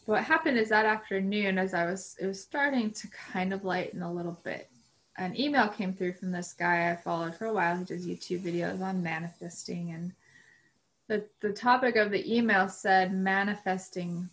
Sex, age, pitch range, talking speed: female, 20-39, 175-195 Hz, 190 wpm